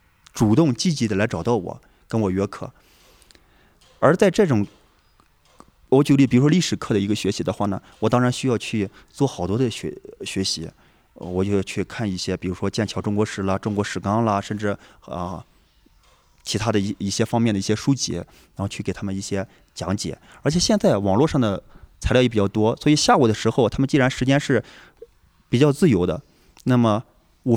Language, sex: Chinese, male